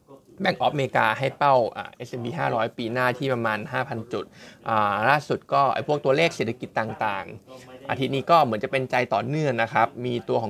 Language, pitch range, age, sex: Thai, 120-150 Hz, 20-39, male